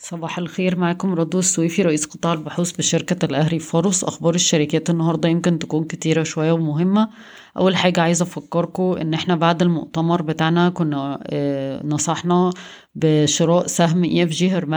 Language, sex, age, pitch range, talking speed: Arabic, female, 30-49, 155-175 Hz, 140 wpm